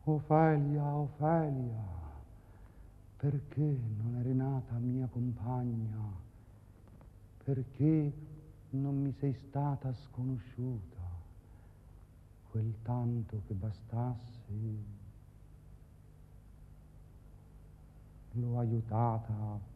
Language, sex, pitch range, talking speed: Italian, male, 90-135 Hz, 60 wpm